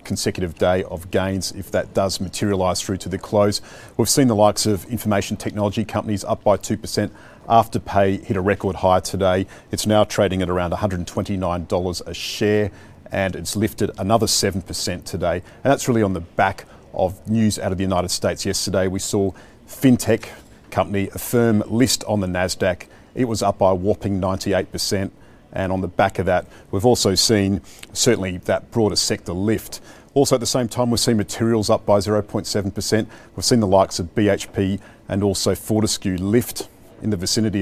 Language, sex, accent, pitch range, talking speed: English, male, Australian, 95-110 Hz, 180 wpm